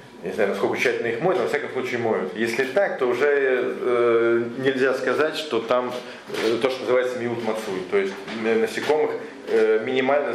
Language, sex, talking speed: Russian, male, 180 wpm